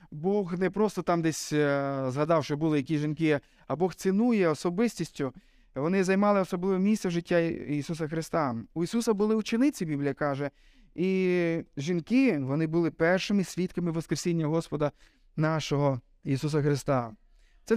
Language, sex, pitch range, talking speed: Ukrainian, male, 150-185 Hz, 135 wpm